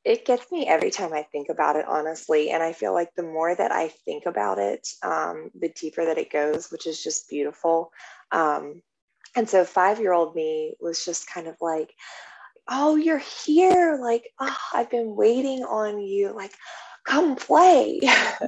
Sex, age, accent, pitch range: female, 20-39, American, 160-230 Hz